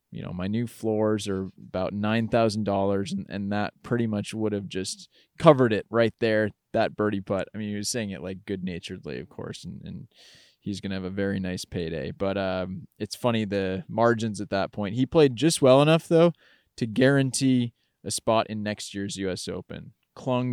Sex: male